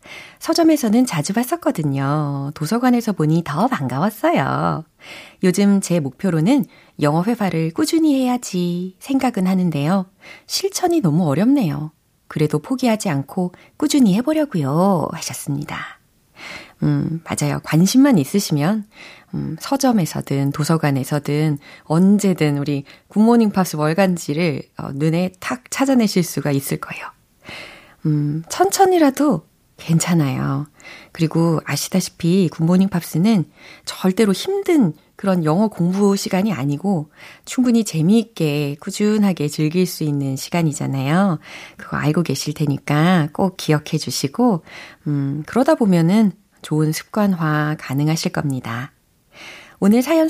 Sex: female